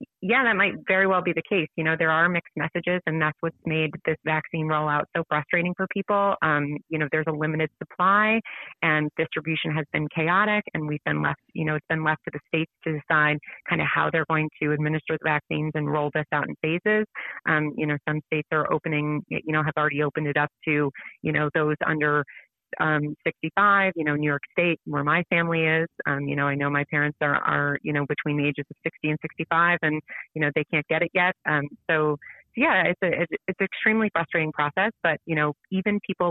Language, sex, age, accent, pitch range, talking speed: English, female, 30-49, American, 150-175 Hz, 225 wpm